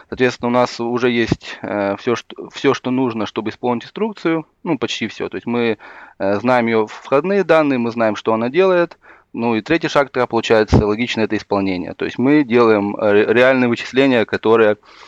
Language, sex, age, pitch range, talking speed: Russian, male, 20-39, 105-130 Hz, 165 wpm